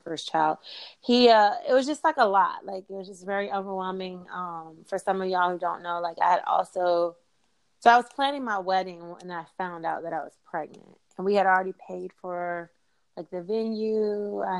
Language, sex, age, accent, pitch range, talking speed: English, female, 20-39, American, 175-200 Hz, 215 wpm